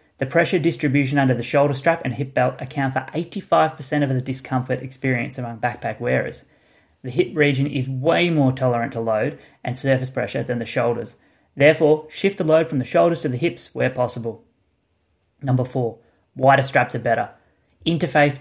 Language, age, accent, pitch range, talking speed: English, 20-39, Australian, 120-145 Hz, 175 wpm